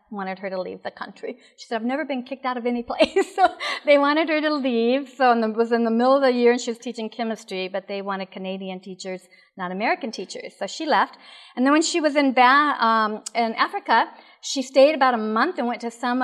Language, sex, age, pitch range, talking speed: English, female, 50-69, 215-270 Hz, 245 wpm